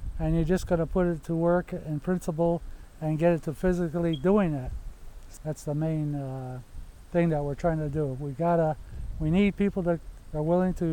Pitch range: 145-175 Hz